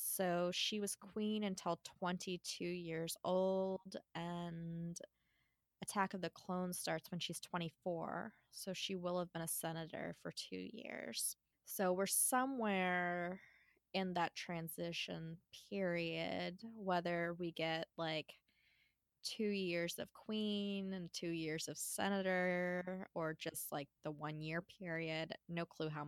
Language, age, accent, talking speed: English, 20-39, American, 130 wpm